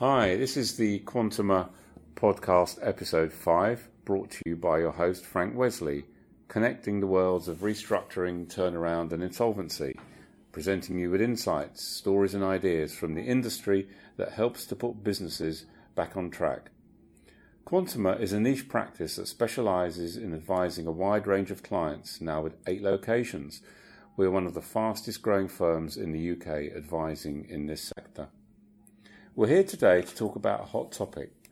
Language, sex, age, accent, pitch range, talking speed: English, male, 40-59, British, 85-105 Hz, 160 wpm